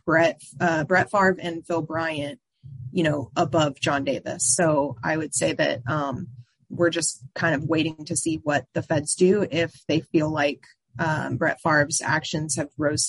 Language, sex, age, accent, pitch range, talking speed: English, female, 20-39, American, 150-175 Hz, 180 wpm